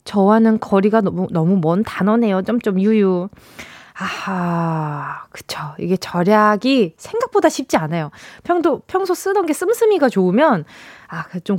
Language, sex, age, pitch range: Korean, female, 20-39, 190-315 Hz